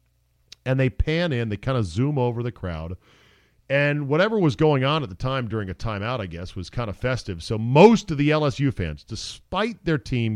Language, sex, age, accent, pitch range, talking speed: English, male, 40-59, American, 90-140 Hz, 215 wpm